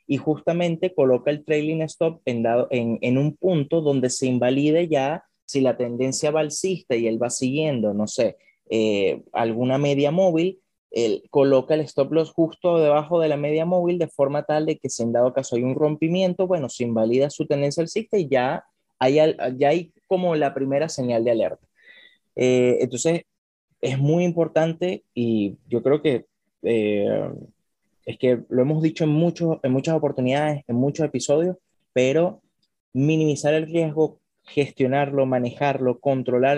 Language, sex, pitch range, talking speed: Spanish, male, 125-155 Hz, 165 wpm